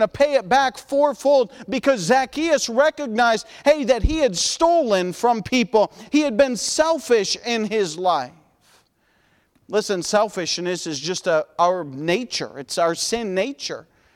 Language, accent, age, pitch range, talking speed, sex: English, American, 40-59, 190-260 Hz, 135 wpm, male